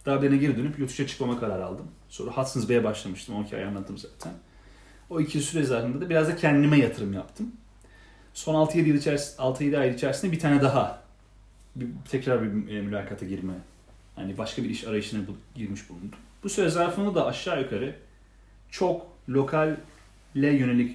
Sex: male